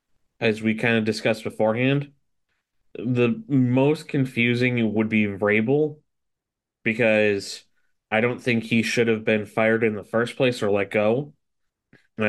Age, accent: 20-39, American